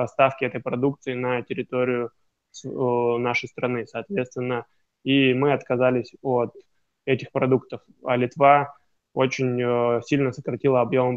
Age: 20-39